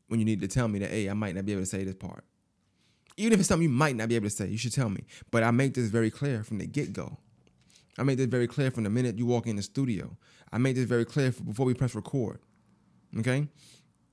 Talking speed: 270 wpm